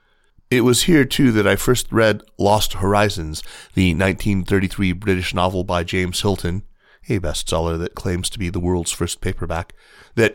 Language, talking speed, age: English, 160 wpm, 30-49